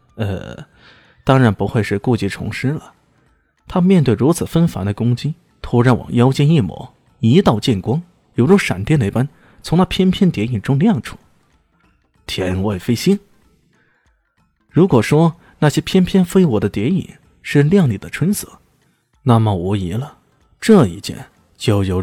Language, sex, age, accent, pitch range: Chinese, male, 20-39, native, 105-150 Hz